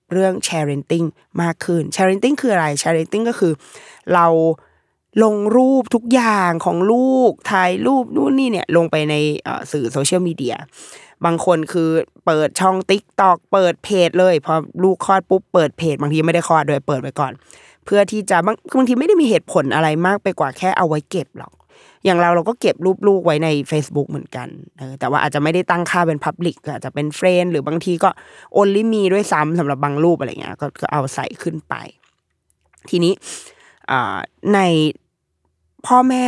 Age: 20-39